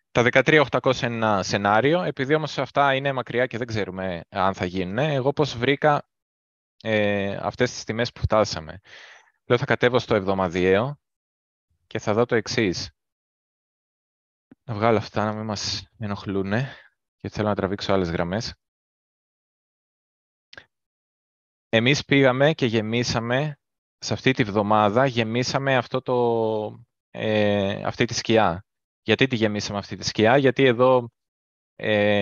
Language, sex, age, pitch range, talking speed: Greek, male, 20-39, 100-130 Hz, 130 wpm